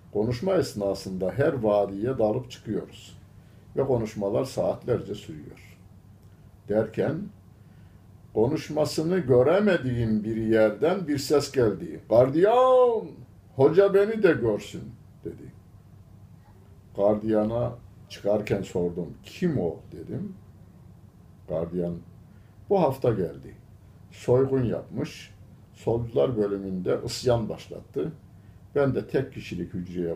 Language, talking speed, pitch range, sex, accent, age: Turkish, 90 wpm, 95-130 Hz, male, native, 60-79